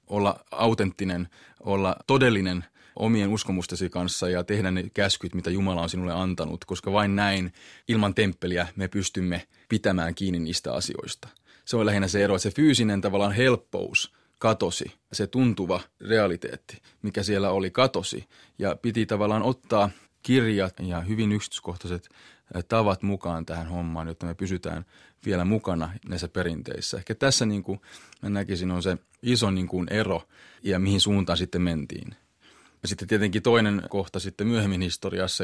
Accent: native